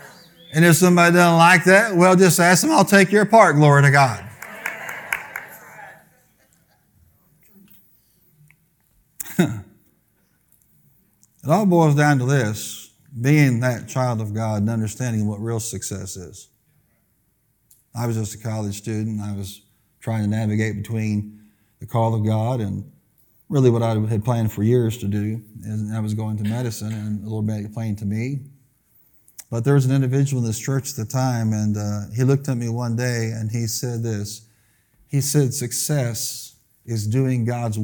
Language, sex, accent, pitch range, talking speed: English, male, American, 110-135 Hz, 160 wpm